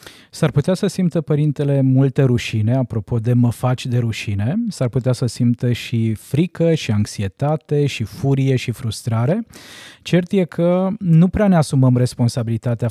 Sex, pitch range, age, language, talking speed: male, 125-150 Hz, 20-39, Romanian, 155 wpm